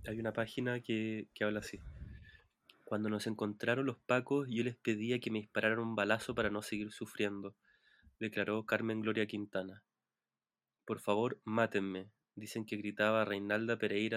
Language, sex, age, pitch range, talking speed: Spanish, male, 20-39, 105-115 Hz, 155 wpm